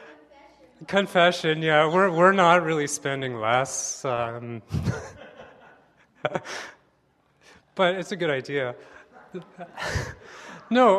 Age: 30-49